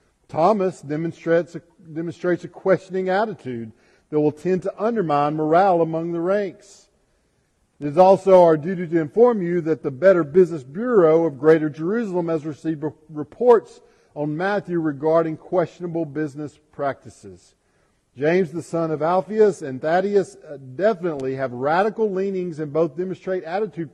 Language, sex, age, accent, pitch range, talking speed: English, male, 50-69, American, 150-190 Hz, 140 wpm